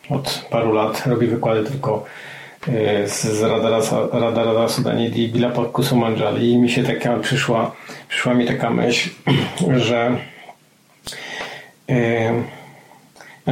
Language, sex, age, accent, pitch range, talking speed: Polish, male, 40-59, native, 115-135 Hz, 110 wpm